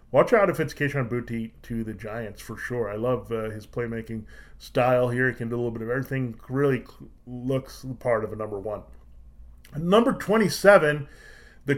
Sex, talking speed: male, 190 wpm